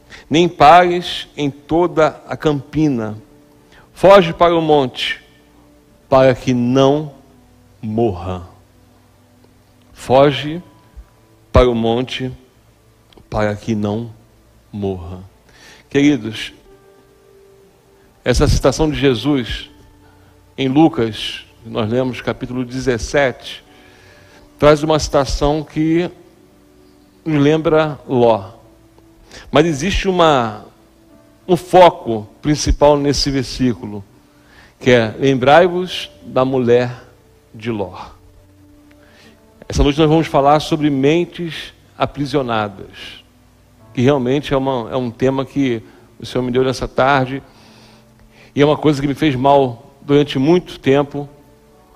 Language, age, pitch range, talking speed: Portuguese, 60-79, 110-145 Hz, 100 wpm